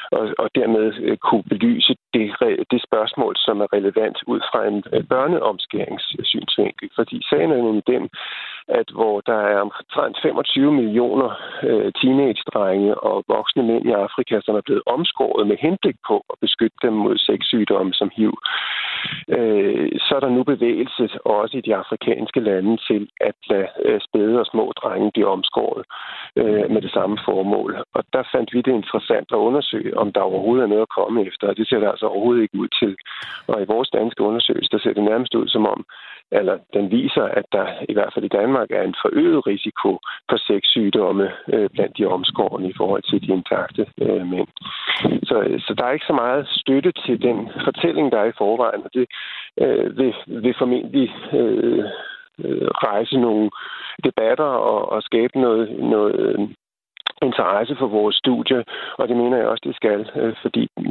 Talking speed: 175 wpm